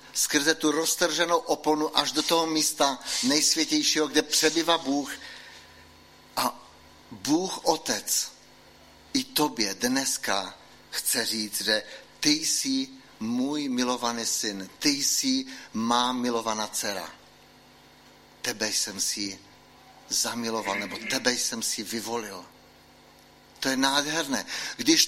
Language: Czech